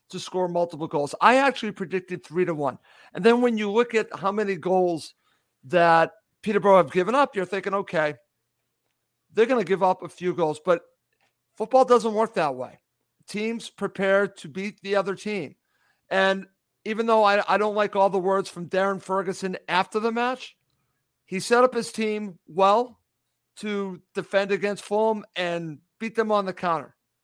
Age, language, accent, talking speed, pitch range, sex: 50-69, English, American, 175 wpm, 170-210 Hz, male